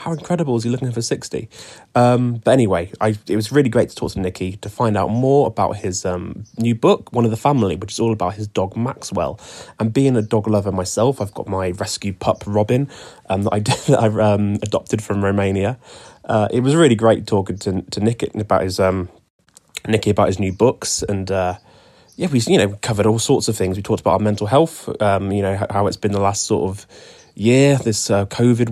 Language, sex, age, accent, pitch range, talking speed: English, male, 20-39, British, 100-120 Hz, 230 wpm